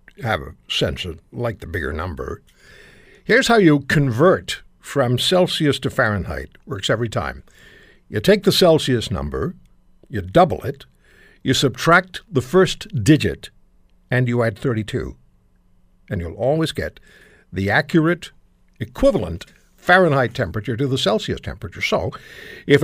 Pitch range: 100-165 Hz